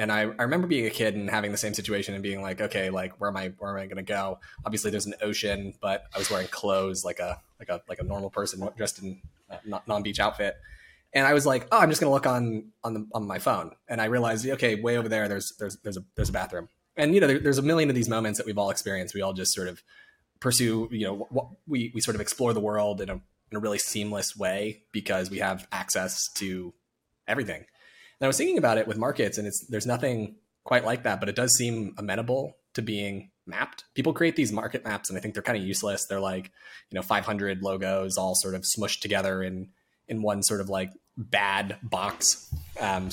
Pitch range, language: 95-110 Hz, English